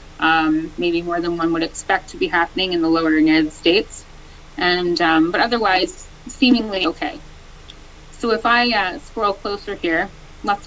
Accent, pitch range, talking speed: American, 170-265 Hz, 165 wpm